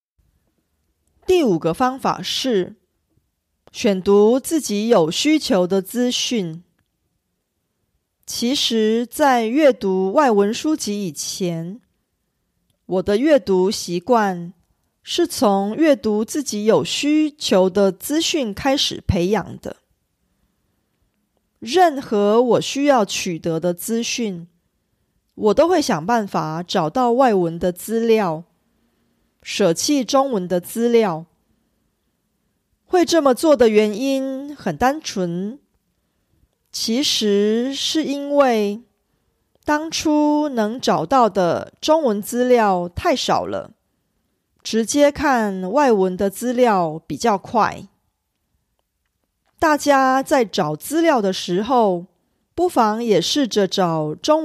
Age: 30-49